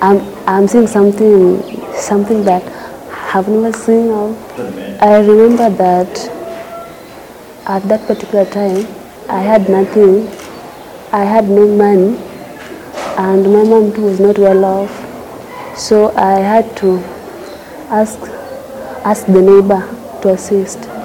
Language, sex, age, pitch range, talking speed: English, female, 20-39, 195-230 Hz, 115 wpm